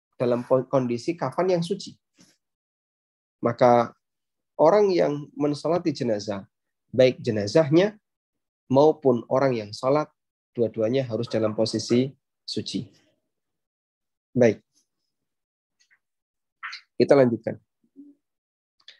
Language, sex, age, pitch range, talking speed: Indonesian, male, 20-39, 120-155 Hz, 80 wpm